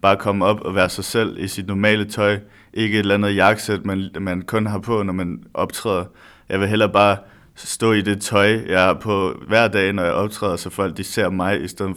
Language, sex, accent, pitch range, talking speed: Danish, male, native, 95-105 Hz, 230 wpm